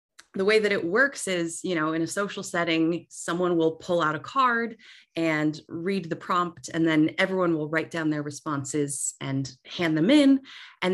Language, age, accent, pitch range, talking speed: English, 30-49, American, 150-190 Hz, 190 wpm